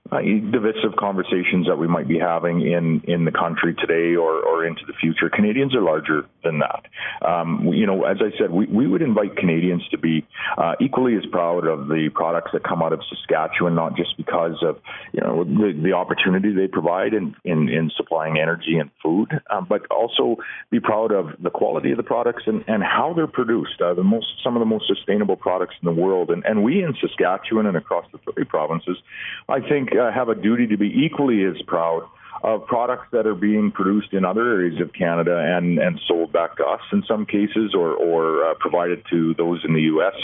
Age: 40-59